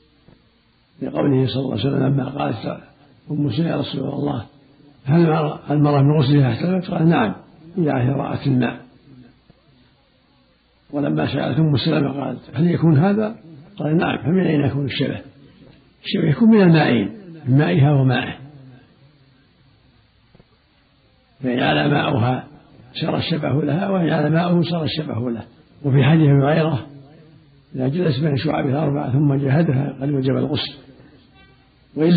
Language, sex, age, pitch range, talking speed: Arabic, male, 60-79, 130-155 Hz, 130 wpm